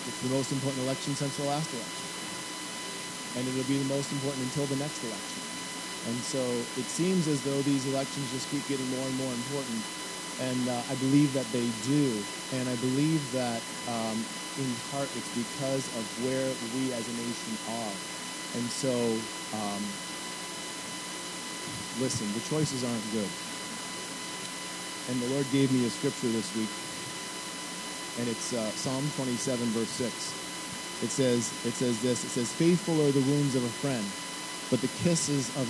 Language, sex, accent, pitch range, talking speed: English, male, American, 120-140 Hz, 165 wpm